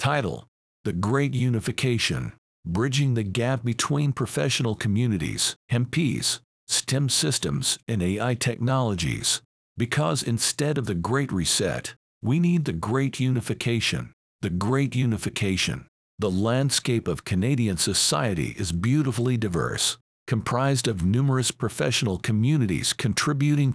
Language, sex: English, male